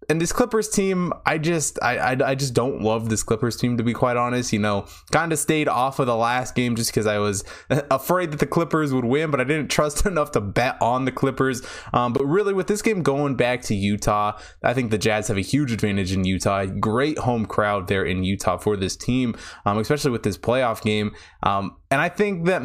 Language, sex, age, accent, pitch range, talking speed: English, male, 20-39, American, 100-140 Hz, 235 wpm